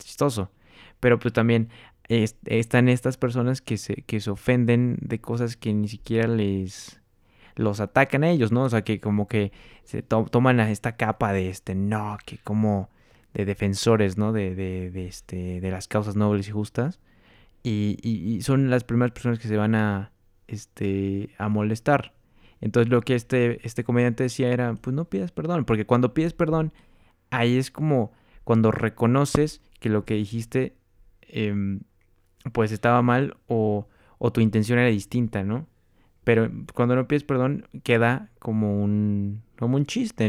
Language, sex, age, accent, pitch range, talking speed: Spanish, male, 20-39, Mexican, 100-120 Hz, 170 wpm